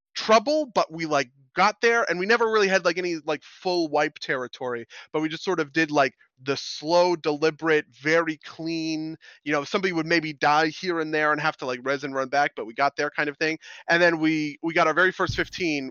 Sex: male